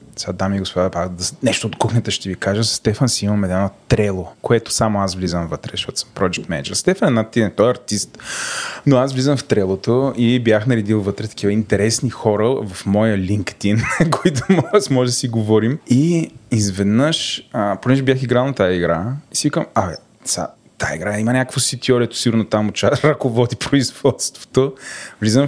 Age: 20-39